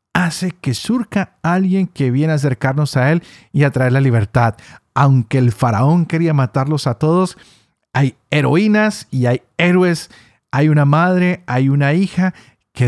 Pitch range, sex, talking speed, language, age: 110-150 Hz, male, 160 wpm, Spanish, 50-69